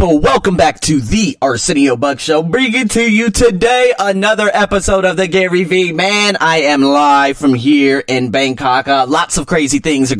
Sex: male